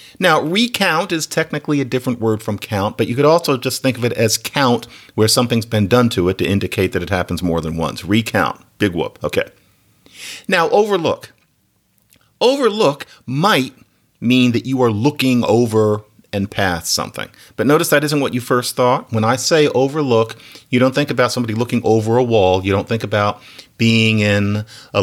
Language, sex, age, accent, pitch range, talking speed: English, male, 40-59, American, 100-140 Hz, 185 wpm